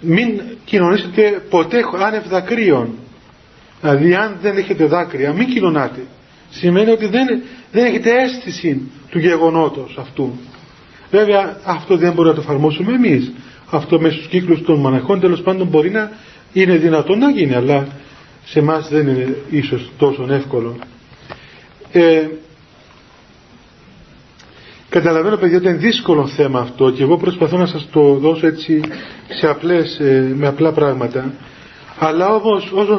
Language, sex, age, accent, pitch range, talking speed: Greek, male, 40-59, native, 145-200 Hz, 135 wpm